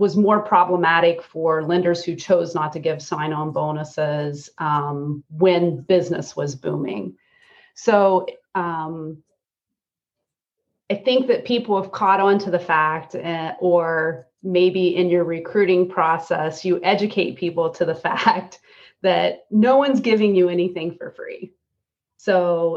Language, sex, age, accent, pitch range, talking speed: English, female, 30-49, American, 165-200 Hz, 135 wpm